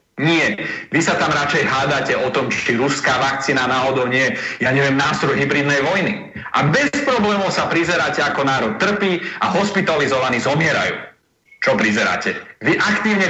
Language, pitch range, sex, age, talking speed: Slovak, 145-195 Hz, male, 30-49, 150 wpm